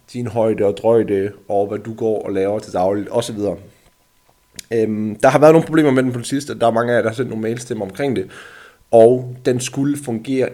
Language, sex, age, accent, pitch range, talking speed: Danish, male, 30-49, native, 110-135 Hz, 215 wpm